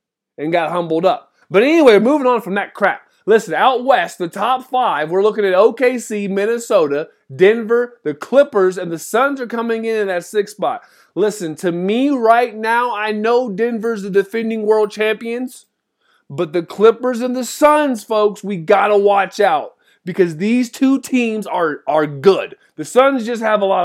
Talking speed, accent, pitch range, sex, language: 180 wpm, American, 190-245 Hz, male, English